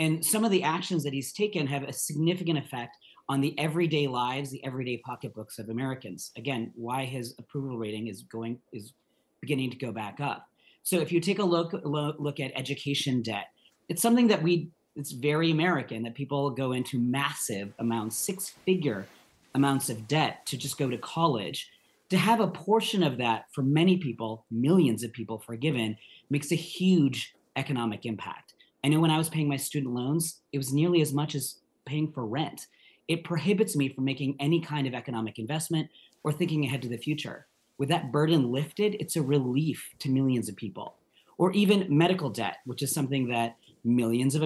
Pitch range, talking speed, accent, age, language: 120-155 Hz, 190 wpm, American, 40-59, English